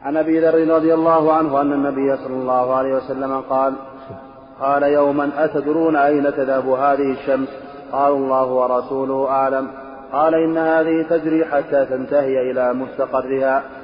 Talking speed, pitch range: 140 wpm, 135-150 Hz